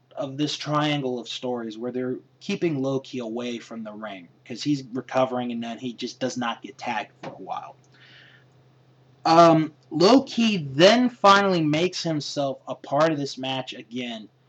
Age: 20-39